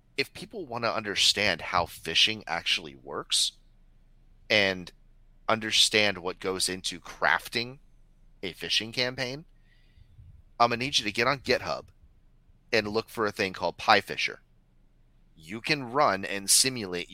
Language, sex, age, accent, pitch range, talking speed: English, male, 30-49, American, 85-110 Hz, 135 wpm